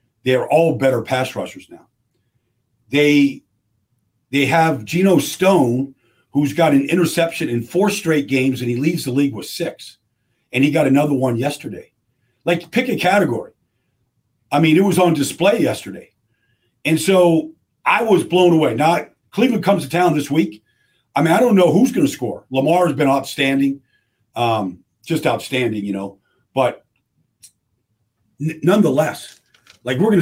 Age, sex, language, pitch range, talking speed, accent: 50-69, male, English, 120-165 Hz, 160 wpm, American